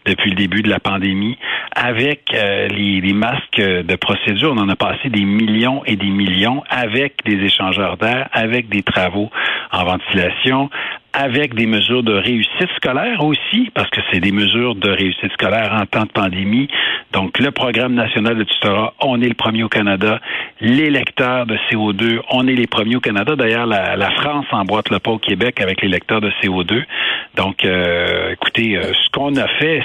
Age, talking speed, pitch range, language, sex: 60-79, 190 wpm, 100-135 Hz, French, male